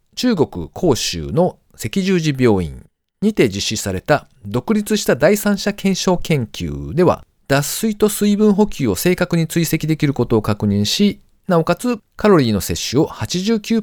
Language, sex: Japanese, male